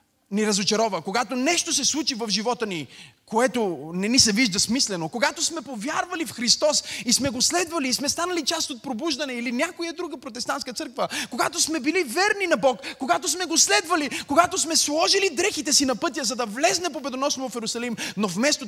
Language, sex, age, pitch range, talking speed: Bulgarian, male, 30-49, 185-295 Hz, 195 wpm